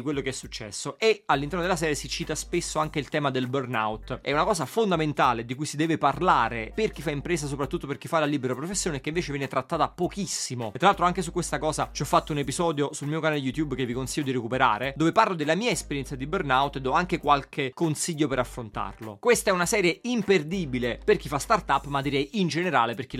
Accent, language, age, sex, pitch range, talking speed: native, Italian, 30-49, male, 130-180 Hz, 235 wpm